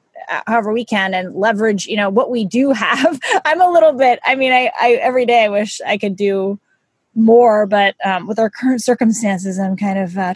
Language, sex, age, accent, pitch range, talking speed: English, female, 20-39, American, 190-220 Hz, 215 wpm